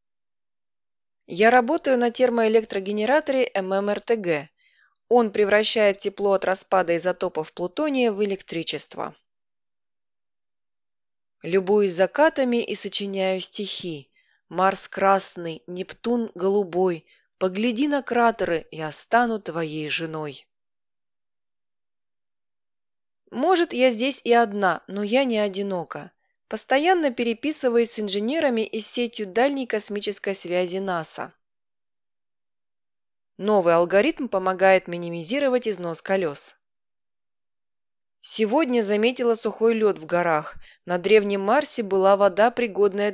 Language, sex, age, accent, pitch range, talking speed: Russian, female, 20-39, native, 170-230 Hz, 95 wpm